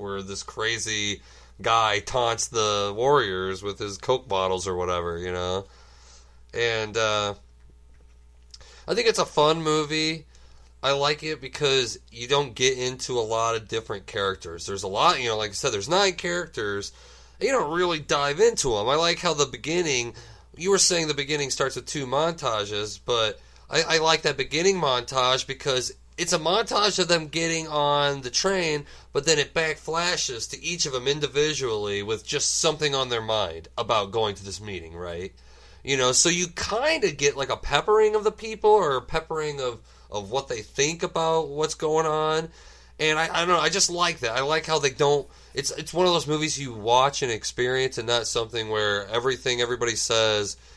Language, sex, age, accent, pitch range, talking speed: English, male, 30-49, American, 100-160 Hz, 190 wpm